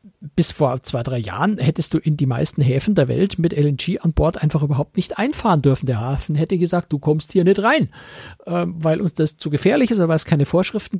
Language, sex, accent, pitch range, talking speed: German, male, German, 145-180 Hz, 230 wpm